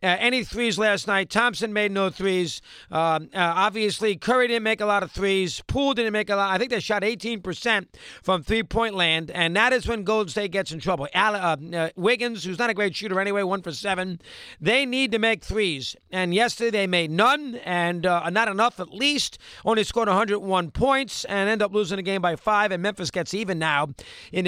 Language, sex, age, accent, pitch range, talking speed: English, male, 50-69, American, 175-220 Hz, 215 wpm